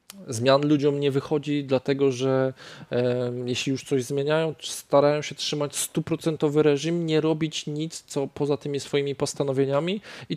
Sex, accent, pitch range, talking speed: male, native, 125-155 Hz, 140 wpm